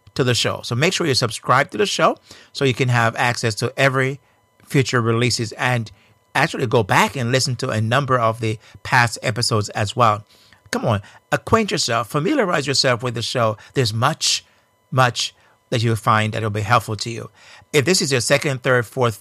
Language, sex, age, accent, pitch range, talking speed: English, male, 50-69, American, 110-135 Hz, 195 wpm